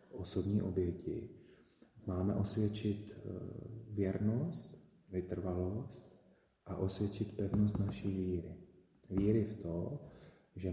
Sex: male